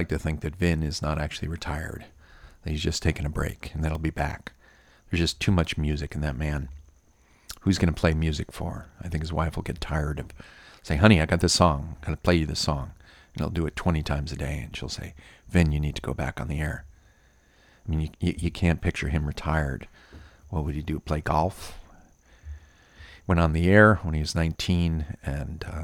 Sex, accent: male, American